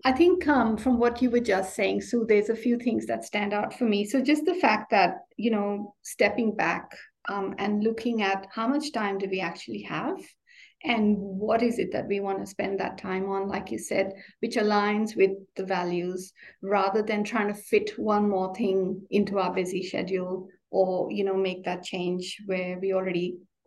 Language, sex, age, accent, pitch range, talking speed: English, female, 50-69, Indian, 185-225 Hz, 205 wpm